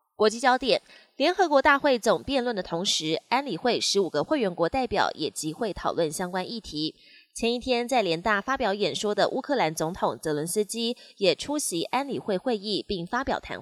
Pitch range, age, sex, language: 175-245 Hz, 20-39, female, Chinese